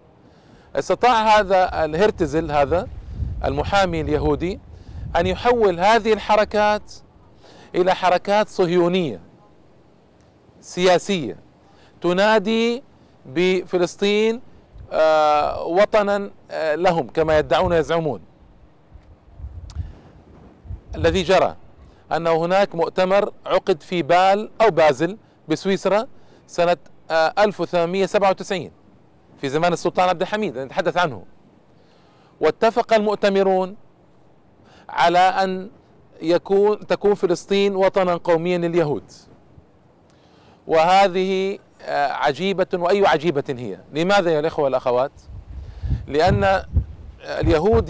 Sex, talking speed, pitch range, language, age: male, 80 wpm, 160-200 Hz, Arabic, 40-59